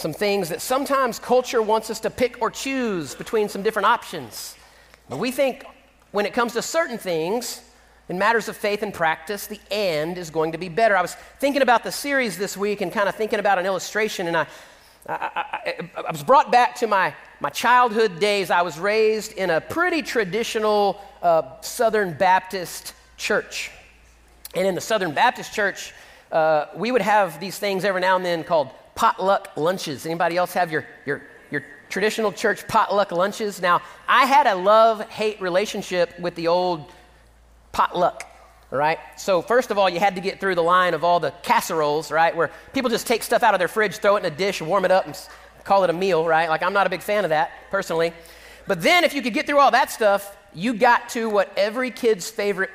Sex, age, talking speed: male, 40-59, 205 wpm